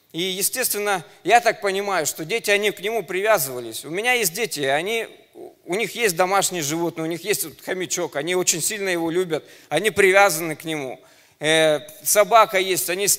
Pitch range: 170-220 Hz